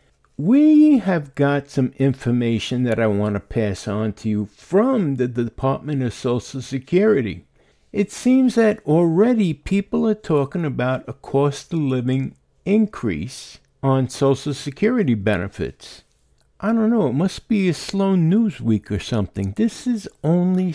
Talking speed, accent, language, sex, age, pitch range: 150 wpm, American, English, male, 50-69, 130-200 Hz